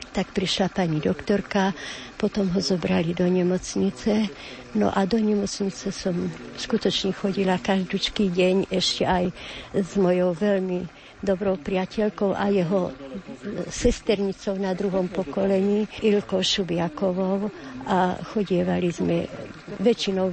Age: 50-69